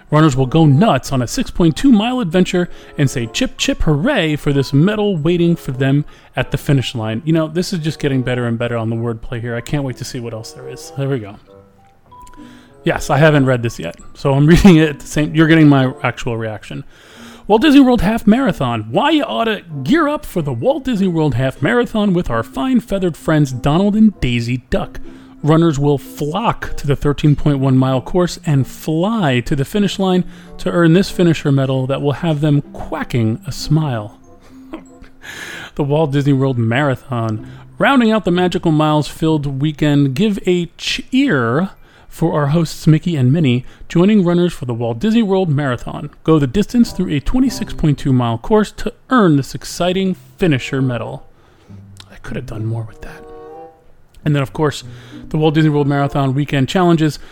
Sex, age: male, 30-49